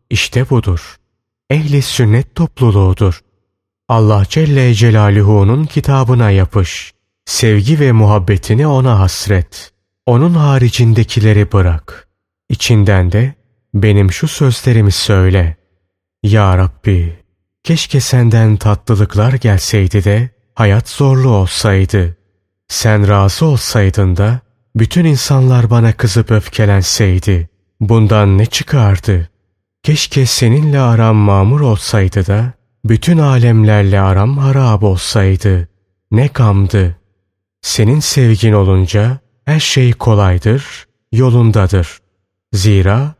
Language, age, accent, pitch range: Turkish, 30-49, native, 100-125 Hz